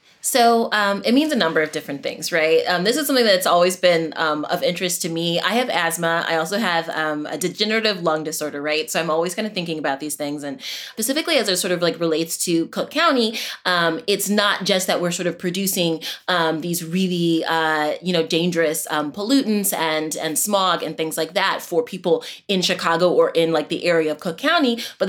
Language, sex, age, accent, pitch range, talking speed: English, female, 20-39, American, 160-205 Hz, 220 wpm